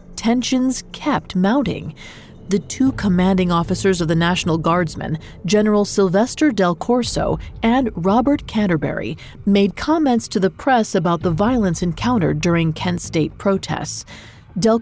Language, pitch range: English, 165-225 Hz